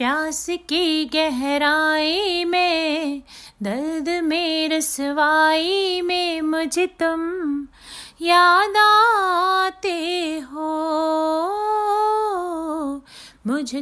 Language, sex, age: Hindi, female, 30-49